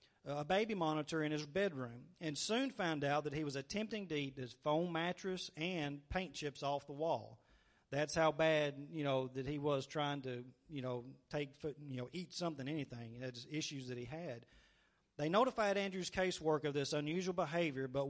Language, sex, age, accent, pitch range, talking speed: English, male, 40-59, American, 135-165 Hz, 185 wpm